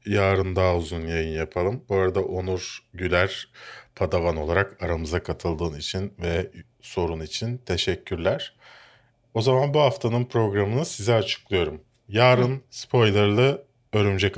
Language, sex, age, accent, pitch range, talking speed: Turkish, male, 40-59, native, 90-120 Hz, 115 wpm